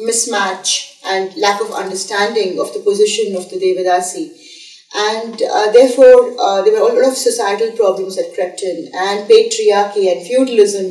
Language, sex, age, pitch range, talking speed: English, female, 30-49, 200-335 Hz, 160 wpm